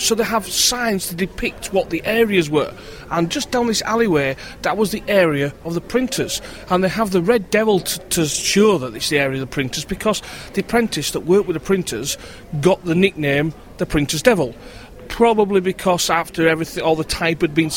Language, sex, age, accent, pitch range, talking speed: English, male, 30-49, British, 150-210 Hz, 205 wpm